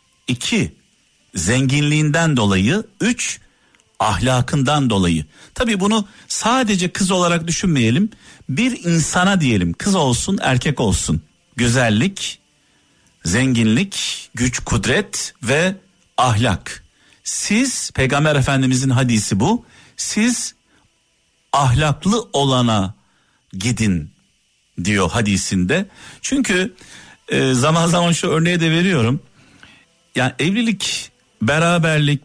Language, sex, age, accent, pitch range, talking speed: Turkish, male, 50-69, native, 125-185 Hz, 90 wpm